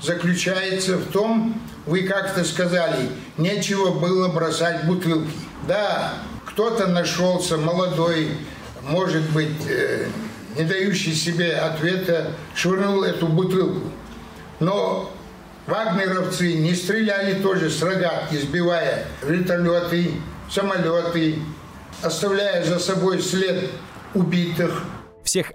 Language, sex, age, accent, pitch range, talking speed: Russian, male, 60-79, native, 110-170 Hz, 95 wpm